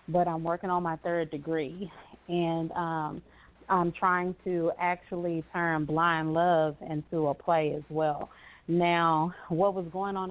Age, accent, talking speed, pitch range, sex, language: 30-49, American, 150 wpm, 155-170 Hz, female, English